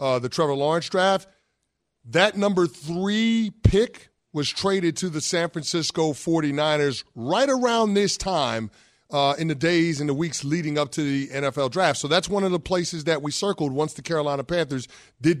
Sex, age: male, 30-49